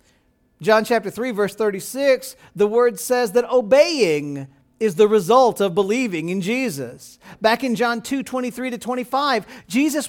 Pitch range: 210-280 Hz